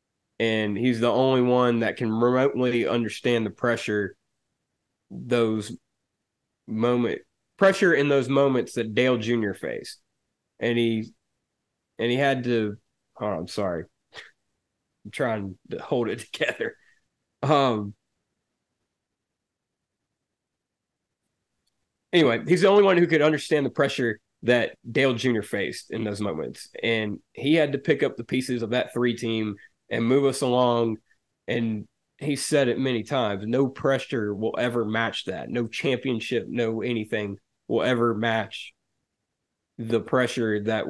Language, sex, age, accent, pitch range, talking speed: English, male, 20-39, American, 110-125 Hz, 135 wpm